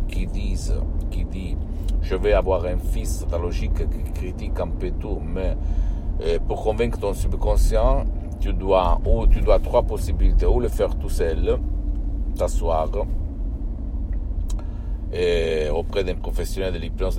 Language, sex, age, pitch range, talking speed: Italian, male, 60-79, 80-95 Hz, 140 wpm